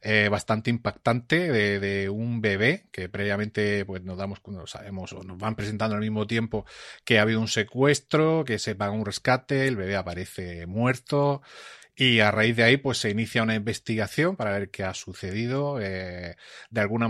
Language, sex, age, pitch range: Spanish, male, 30-49, 105-130 Hz